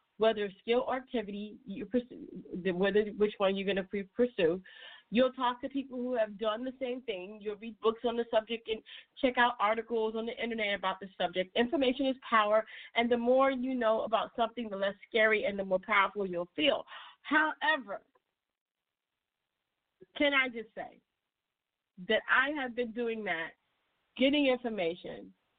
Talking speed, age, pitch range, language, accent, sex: 165 wpm, 40-59, 205-270 Hz, English, American, female